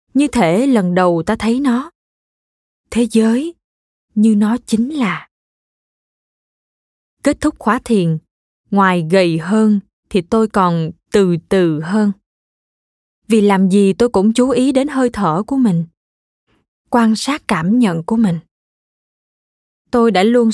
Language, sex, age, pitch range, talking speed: Vietnamese, female, 20-39, 190-240 Hz, 135 wpm